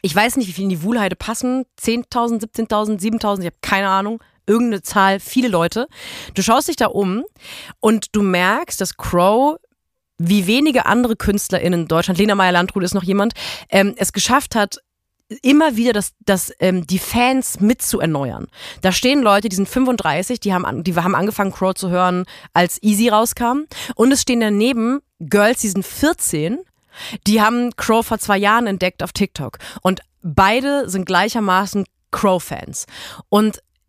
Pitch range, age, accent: 190-240 Hz, 30-49, German